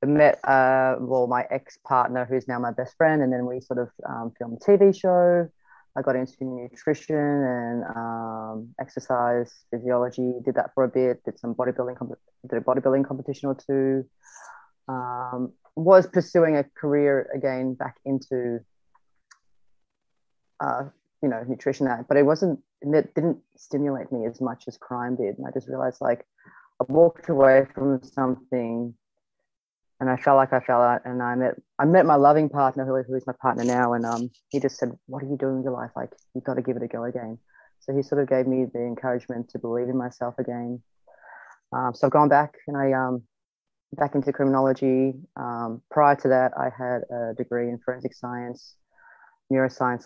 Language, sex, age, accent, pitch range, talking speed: English, female, 30-49, Australian, 125-140 Hz, 185 wpm